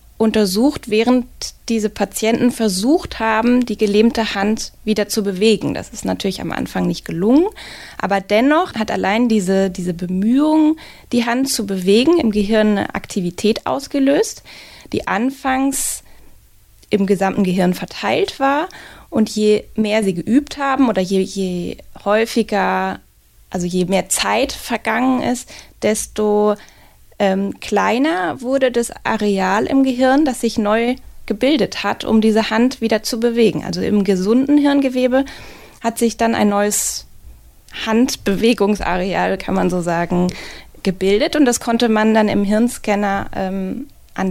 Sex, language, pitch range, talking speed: female, German, 200-245 Hz, 135 wpm